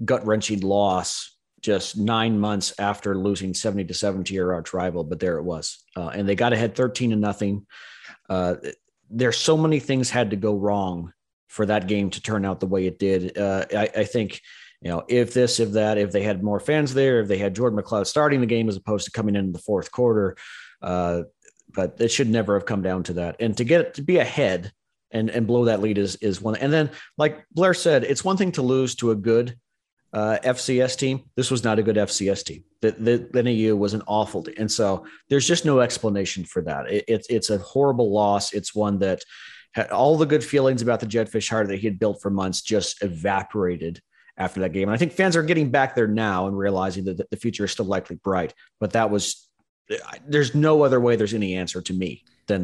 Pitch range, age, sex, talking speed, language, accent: 100-125 Hz, 40-59, male, 230 wpm, English, American